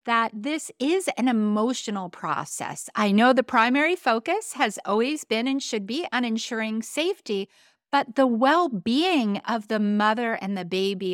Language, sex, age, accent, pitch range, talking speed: English, female, 50-69, American, 195-265 Hz, 160 wpm